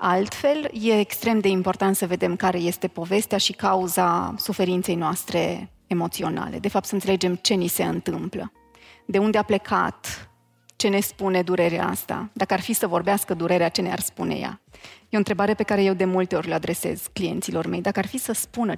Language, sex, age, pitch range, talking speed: Romanian, female, 30-49, 180-210 Hz, 190 wpm